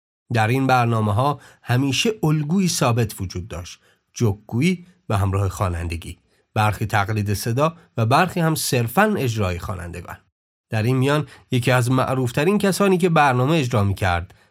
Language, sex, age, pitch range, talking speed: Persian, male, 30-49, 100-135 Hz, 140 wpm